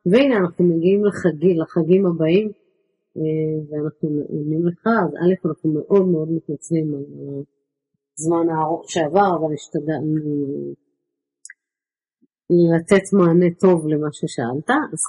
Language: Hebrew